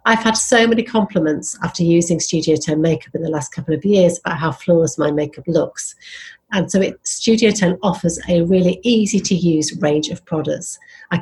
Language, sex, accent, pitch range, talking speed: English, female, British, 160-195 Hz, 200 wpm